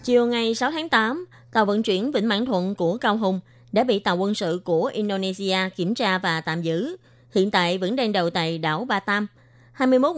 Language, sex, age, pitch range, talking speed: Vietnamese, female, 20-39, 175-215 Hz, 210 wpm